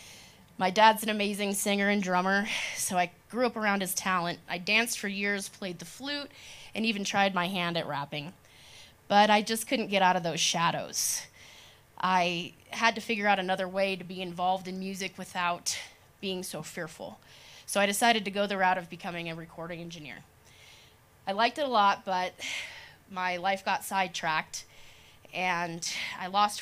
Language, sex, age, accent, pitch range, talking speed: English, female, 20-39, American, 175-205 Hz, 175 wpm